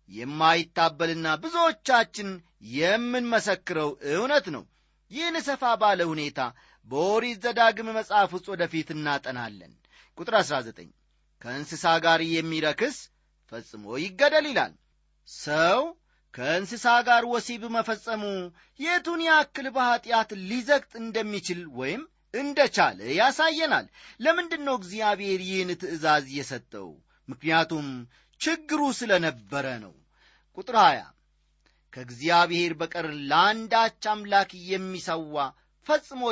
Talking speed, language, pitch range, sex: 85 wpm, Amharic, 160-235 Hz, male